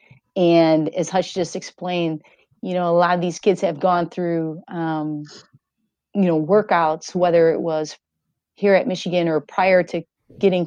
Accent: American